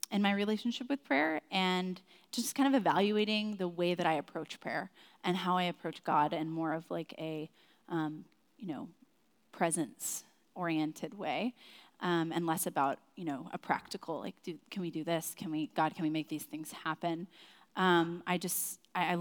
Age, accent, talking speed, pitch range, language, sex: 20-39, American, 185 wpm, 165-205 Hz, English, female